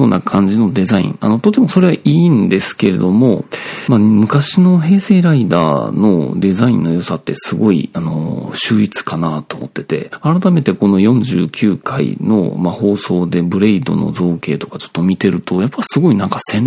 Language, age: Japanese, 40-59